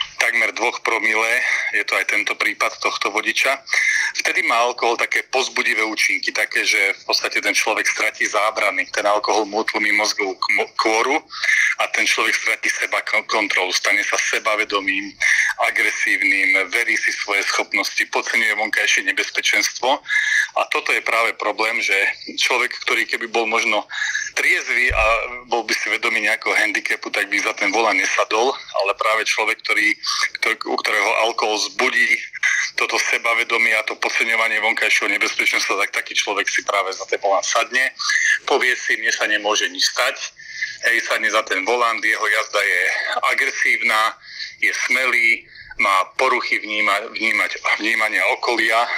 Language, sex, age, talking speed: Slovak, male, 40-59, 145 wpm